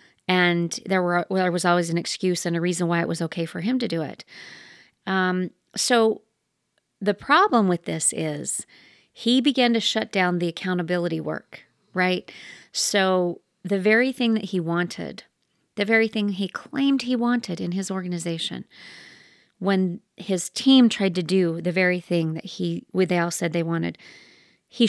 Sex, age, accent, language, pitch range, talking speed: female, 40-59, American, English, 175-215 Hz, 170 wpm